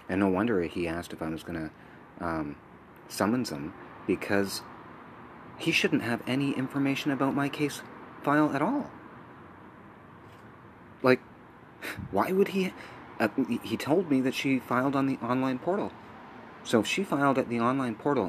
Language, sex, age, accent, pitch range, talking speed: English, male, 30-49, American, 90-130 Hz, 160 wpm